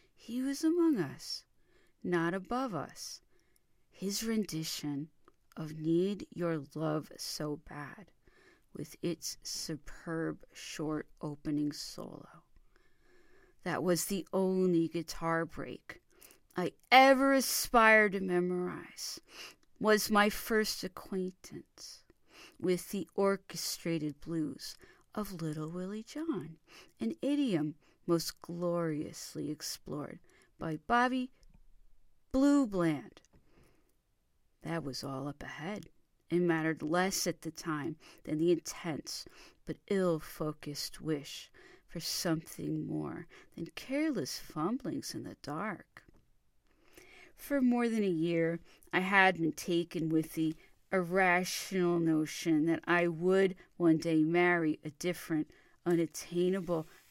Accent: American